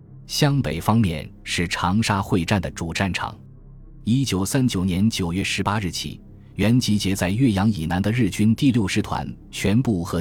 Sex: male